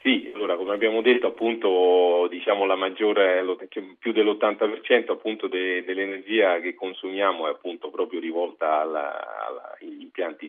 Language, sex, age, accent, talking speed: Italian, male, 40-59, native, 135 wpm